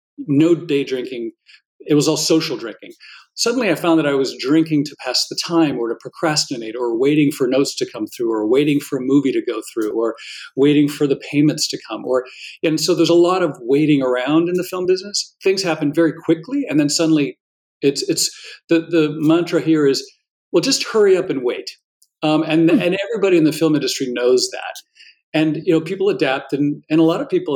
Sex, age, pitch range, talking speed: male, 40-59, 140-170 Hz, 215 wpm